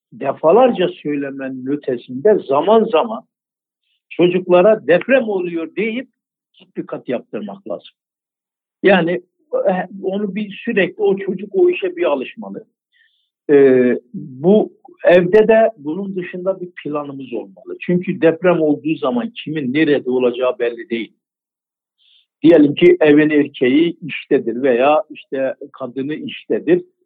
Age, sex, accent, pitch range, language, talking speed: 60-79, male, native, 140-210 Hz, Turkish, 110 wpm